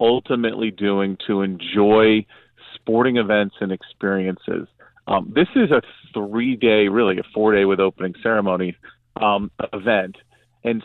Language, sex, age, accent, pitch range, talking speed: English, male, 40-59, American, 100-115 Hz, 120 wpm